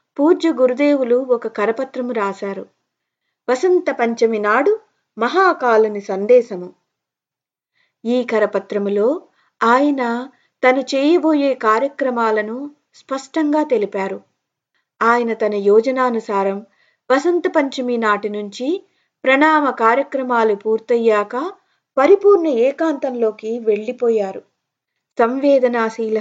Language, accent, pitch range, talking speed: Telugu, native, 220-275 Hz, 65 wpm